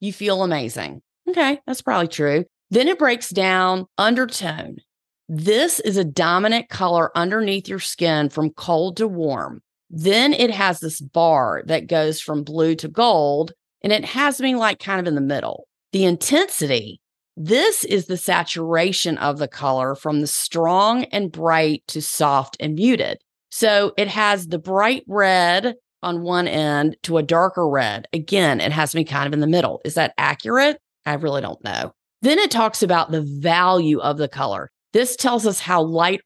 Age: 30-49